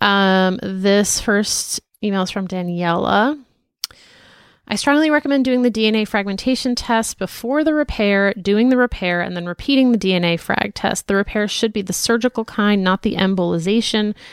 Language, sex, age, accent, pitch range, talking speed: English, female, 30-49, American, 185-235 Hz, 160 wpm